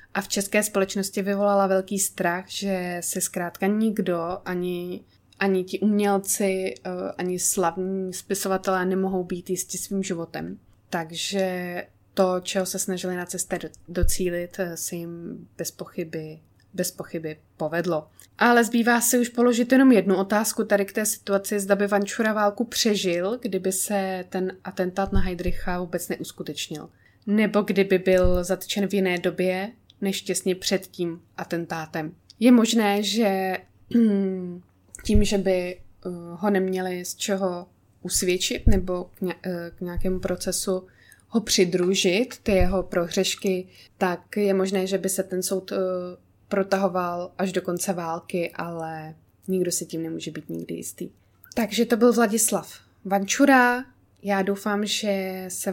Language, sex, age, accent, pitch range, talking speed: Czech, female, 20-39, native, 180-200 Hz, 135 wpm